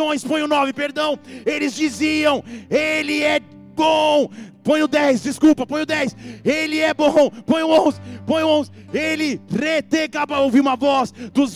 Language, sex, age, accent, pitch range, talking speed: English, male, 30-49, Brazilian, 280-320 Hz, 160 wpm